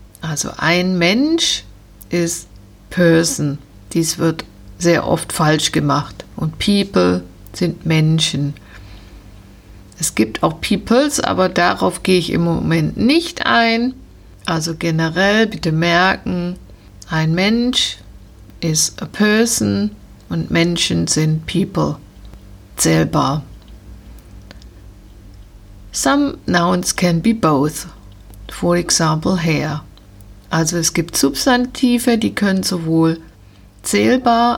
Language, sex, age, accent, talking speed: German, female, 50-69, German, 100 wpm